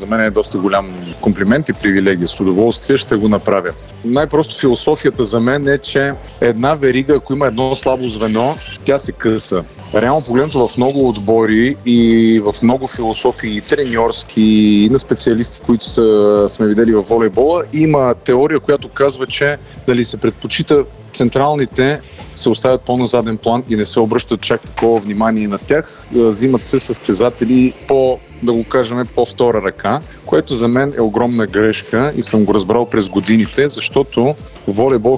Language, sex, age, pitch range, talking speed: Bulgarian, male, 30-49, 110-130 Hz, 160 wpm